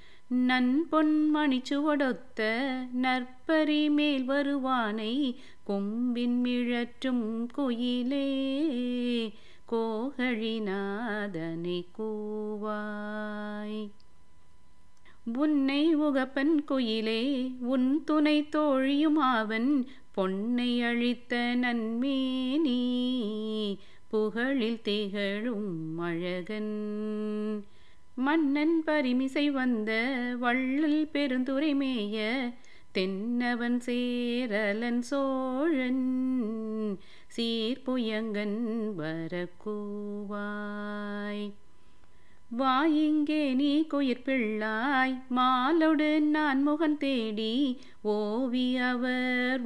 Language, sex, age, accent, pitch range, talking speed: Tamil, female, 30-49, native, 215-265 Hz, 55 wpm